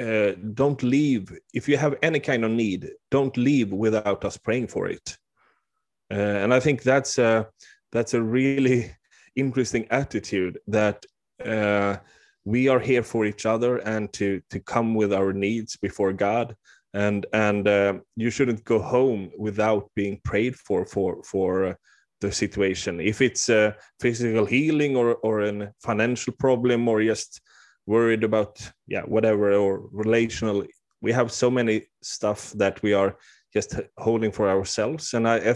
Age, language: 30-49, English